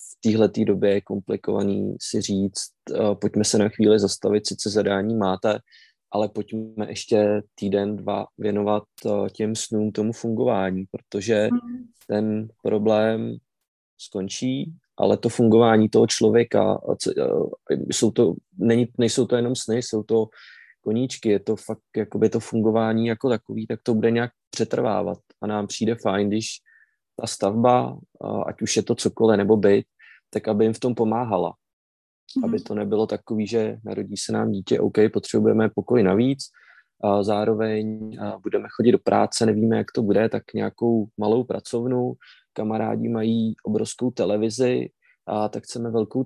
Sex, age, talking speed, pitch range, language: male, 20-39, 150 wpm, 105-115 Hz, Czech